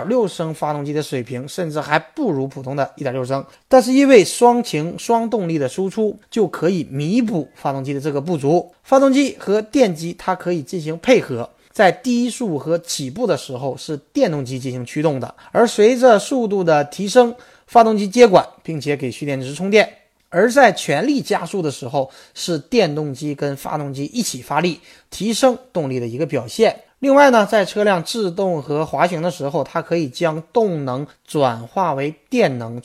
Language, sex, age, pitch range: Chinese, male, 20-39, 140-210 Hz